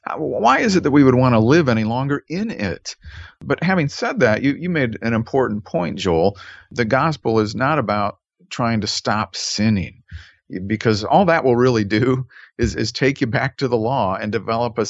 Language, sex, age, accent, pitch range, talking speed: English, male, 50-69, American, 95-120 Hz, 200 wpm